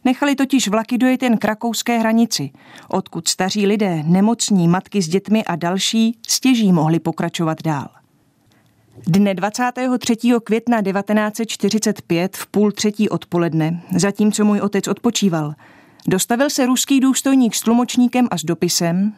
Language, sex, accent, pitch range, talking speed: Czech, female, native, 180-230 Hz, 130 wpm